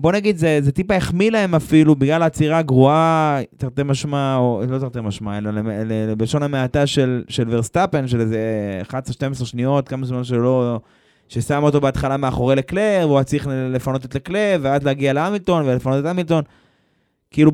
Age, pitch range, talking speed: 20-39, 115-165 Hz, 165 wpm